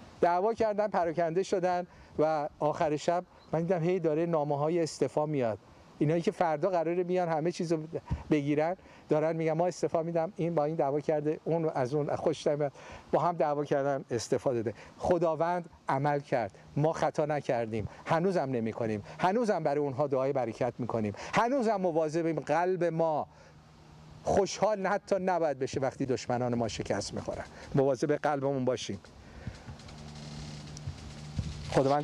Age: 50-69